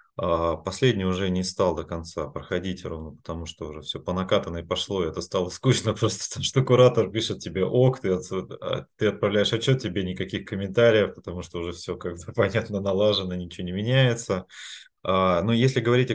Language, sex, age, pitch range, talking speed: Russian, male, 20-39, 95-130 Hz, 170 wpm